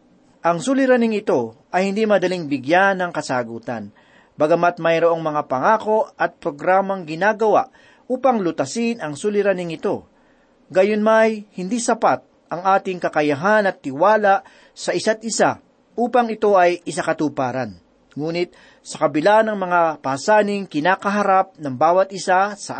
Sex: male